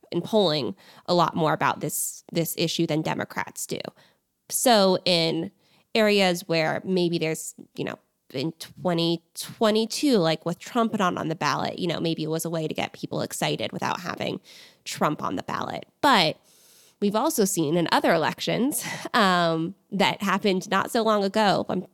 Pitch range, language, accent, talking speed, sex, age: 170-215 Hz, English, American, 165 wpm, female, 20-39